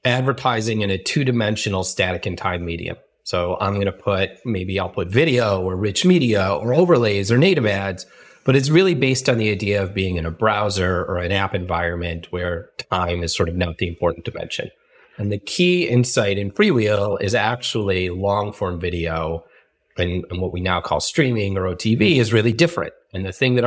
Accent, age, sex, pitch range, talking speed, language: American, 30-49, male, 90-120 Hz, 195 wpm, English